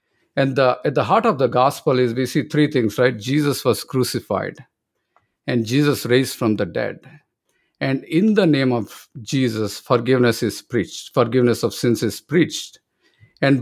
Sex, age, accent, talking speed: male, 50-69, Indian, 165 wpm